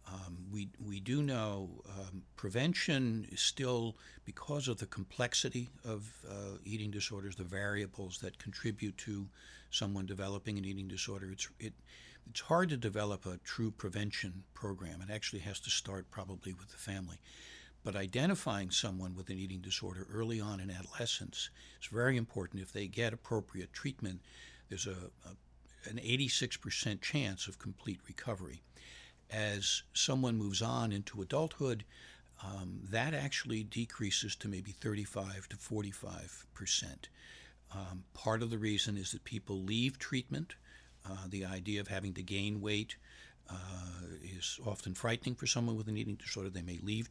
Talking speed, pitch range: 155 wpm, 95-115 Hz